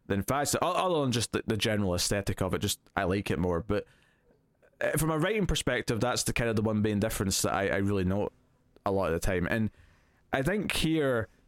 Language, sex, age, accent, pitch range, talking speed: English, male, 20-39, British, 105-135 Hz, 220 wpm